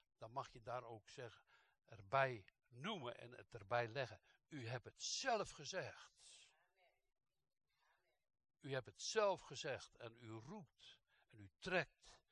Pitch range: 115-165 Hz